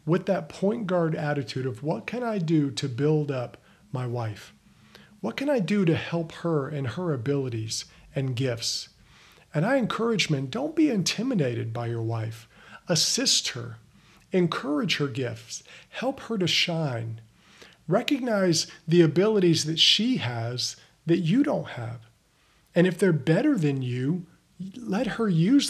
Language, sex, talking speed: English, male, 150 wpm